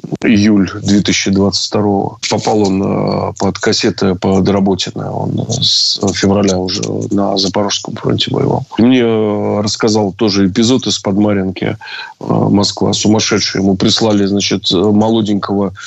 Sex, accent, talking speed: male, native, 100 wpm